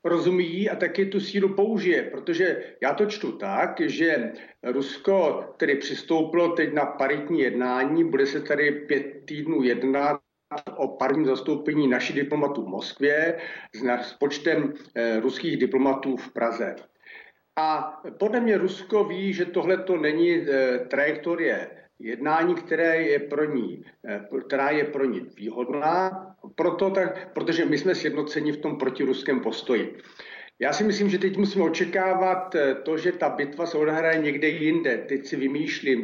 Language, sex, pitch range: Czech, male, 145-185 Hz